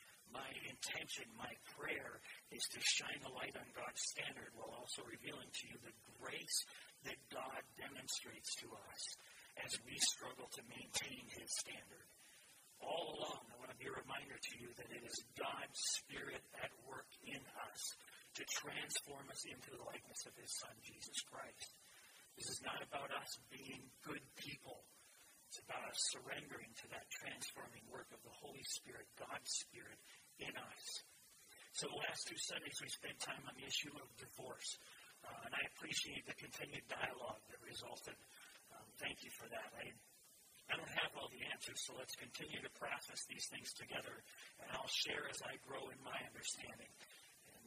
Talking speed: 170 wpm